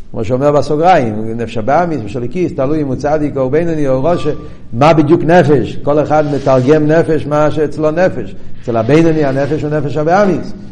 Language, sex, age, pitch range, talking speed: Hebrew, male, 50-69, 120-155 Hz, 170 wpm